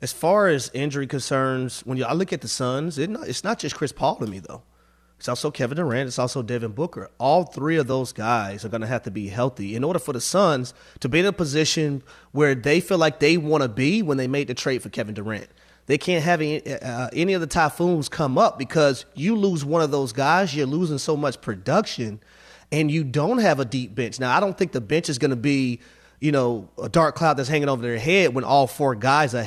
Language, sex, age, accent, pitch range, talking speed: English, male, 30-49, American, 130-160 Hz, 245 wpm